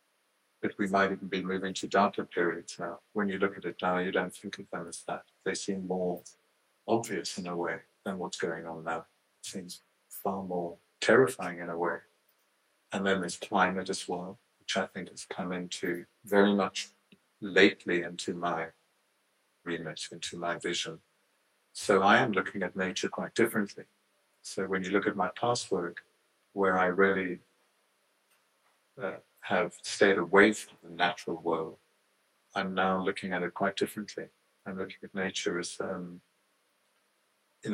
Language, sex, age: English, male, 50-69